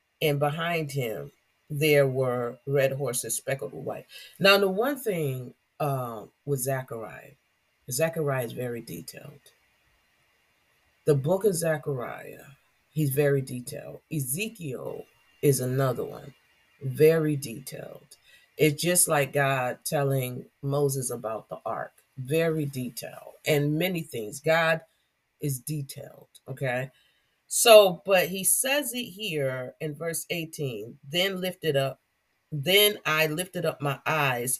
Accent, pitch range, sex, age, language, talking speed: American, 130-160 Hz, female, 40-59, English, 120 wpm